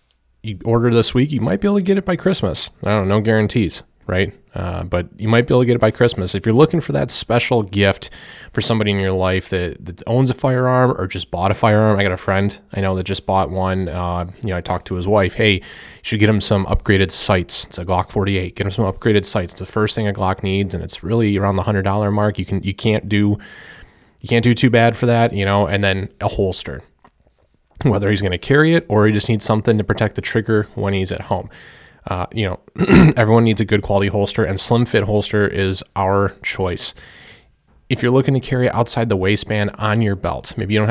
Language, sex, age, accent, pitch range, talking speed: English, male, 30-49, American, 95-115 Hz, 250 wpm